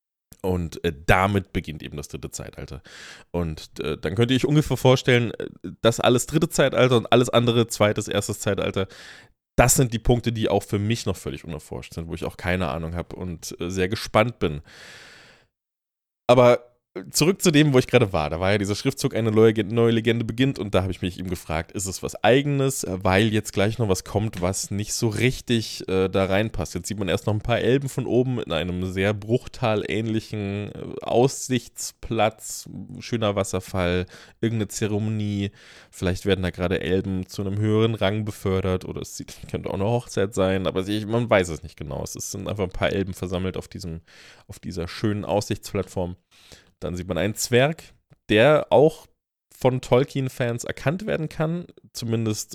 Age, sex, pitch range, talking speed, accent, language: 20-39, male, 95-120 Hz, 175 wpm, German, German